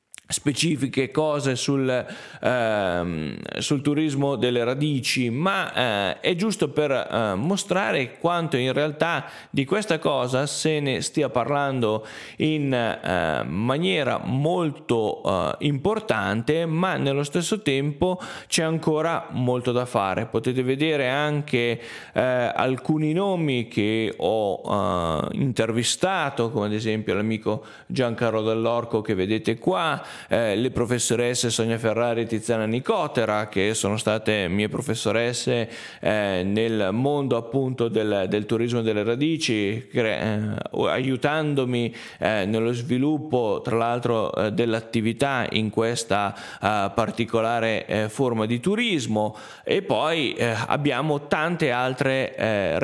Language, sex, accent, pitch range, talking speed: Italian, male, native, 115-150 Hz, 120 wpm